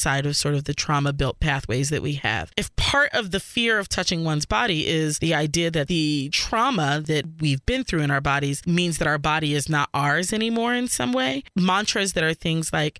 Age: 20-39